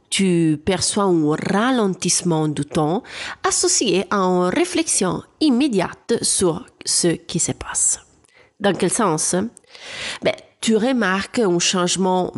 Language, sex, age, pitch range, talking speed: French, female, 30-49, 165-240 Hz, 115 wpm